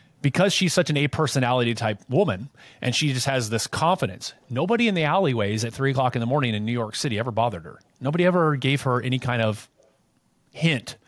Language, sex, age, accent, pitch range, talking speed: English, male, 30-49, American, 115-150 Hz, 210 wpm